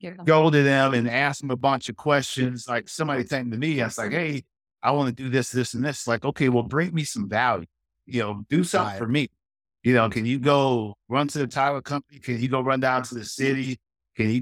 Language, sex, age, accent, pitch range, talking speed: English, male, 50-69, American, 110-140 Hz, 250 wpm